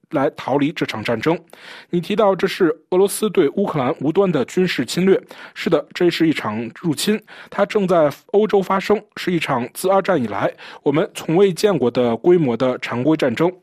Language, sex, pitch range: Chinese, male, 145-195 Hz